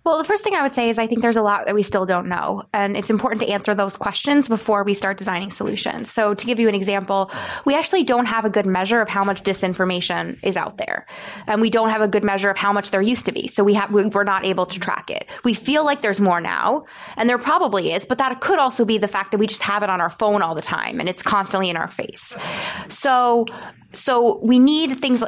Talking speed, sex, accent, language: 260 wpm, female, American, English